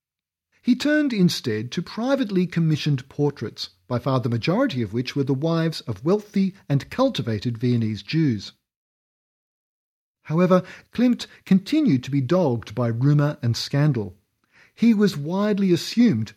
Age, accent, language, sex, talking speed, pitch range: 50-69, Australian, English, male, 130 wpm, 120-180 Hz